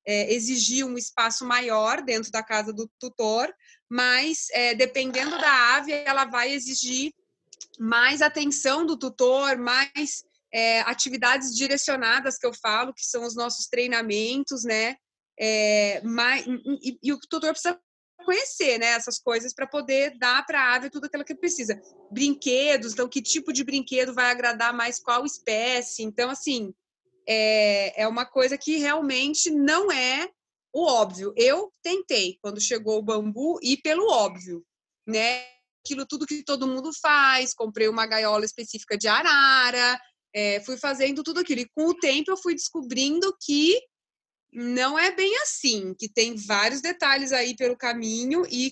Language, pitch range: Portuguese, 235-290 Hz